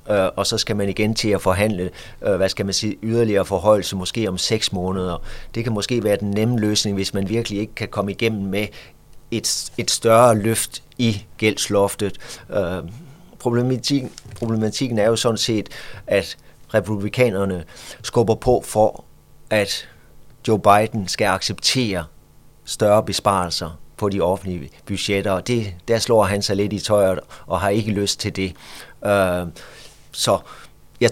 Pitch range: 100-115 Hz